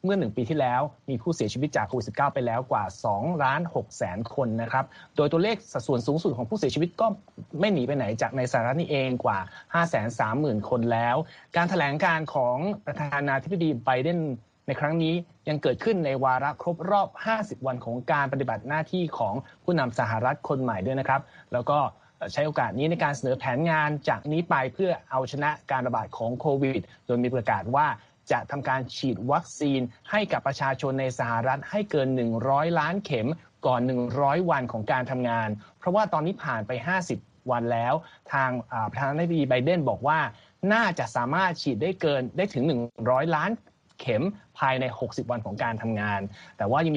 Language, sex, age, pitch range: Thai, male, 20-39, 125-165 Hz